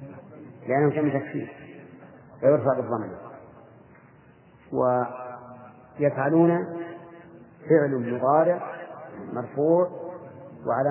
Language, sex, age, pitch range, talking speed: Arabic, male, 50-69, 130-145 Hz, 60 wpm